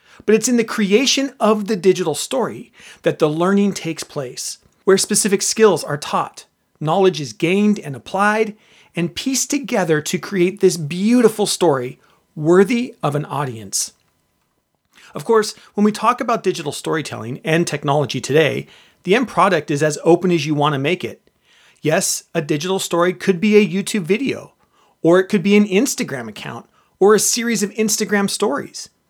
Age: 40-59